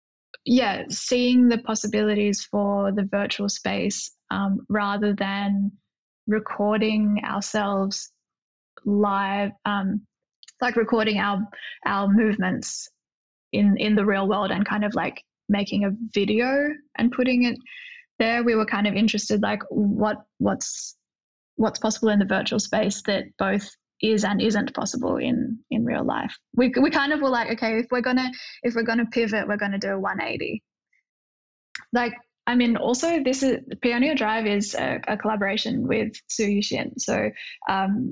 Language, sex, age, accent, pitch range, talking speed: English, female, 10-29, Australian, 200-235 Hz, 155 wpm